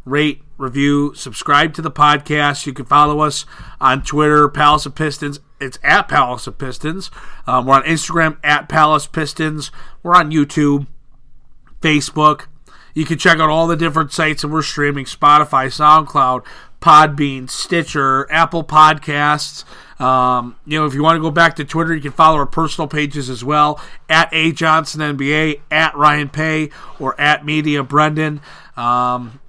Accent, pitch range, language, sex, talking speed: American, 145-170 Hz, English, male, 160 wpm